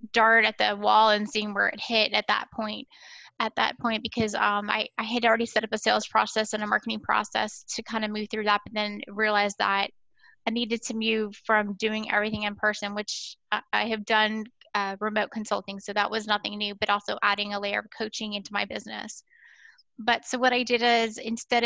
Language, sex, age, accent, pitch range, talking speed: English, female, 10-29, American, 210-230 Hz, 220 wpm